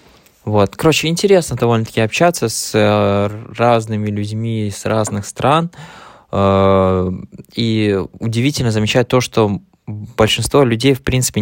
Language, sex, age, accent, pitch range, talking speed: Russian, male, 20-39, native, 100-120 Hz, 105 wpm